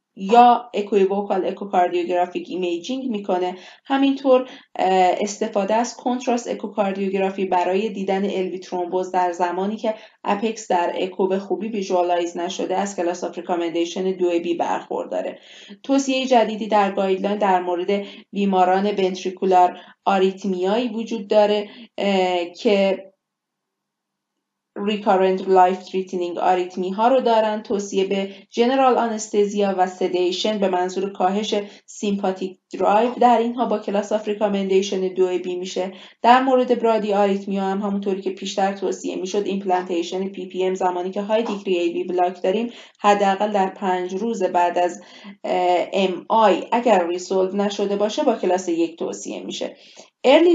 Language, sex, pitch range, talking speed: Persian, female, 185-220 Hz, 125 wpm